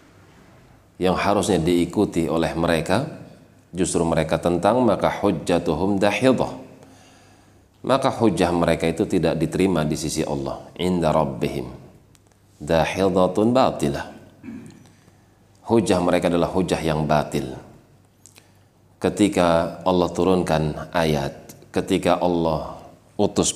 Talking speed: 90 wpm